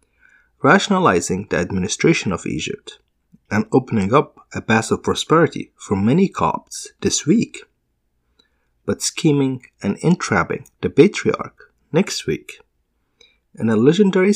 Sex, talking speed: male, 115 wpm